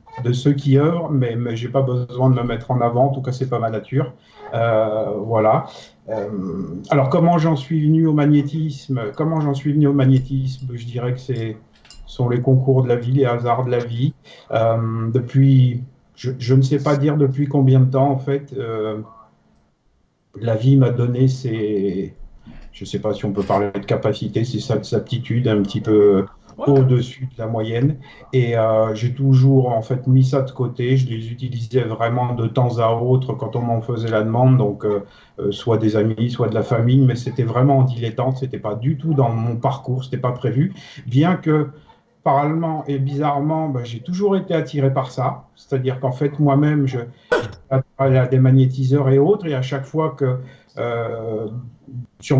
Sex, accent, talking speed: male, French, 200 wpm